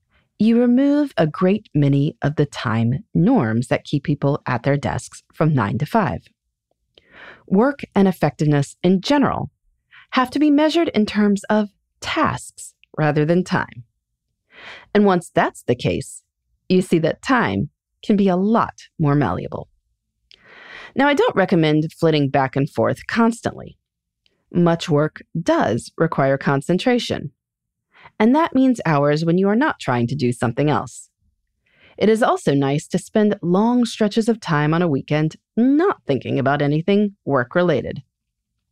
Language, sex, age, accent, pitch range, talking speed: English, female, 30-49, American, 145-235 Hz, 145 wpm